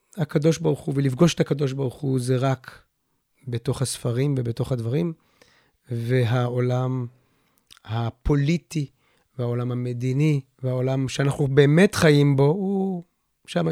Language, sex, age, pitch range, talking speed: Hebrew, male, 30-49, 125-155 Hz, 110 wpm